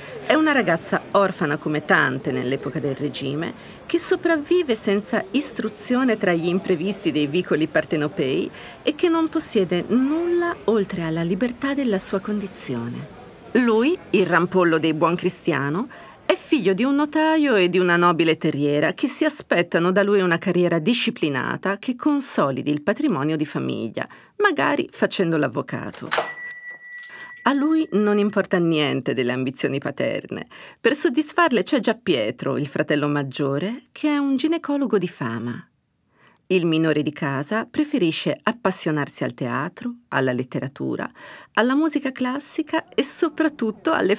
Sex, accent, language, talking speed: female, native, Italian, 135 wpm